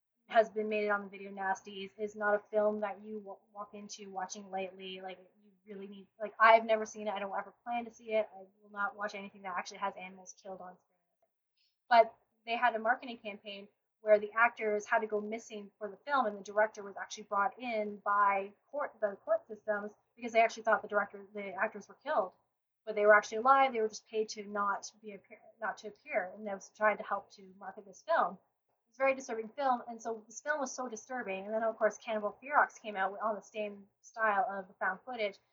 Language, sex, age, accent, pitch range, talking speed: English, female, 20-39, American, 200-220 Hz, 235 wpm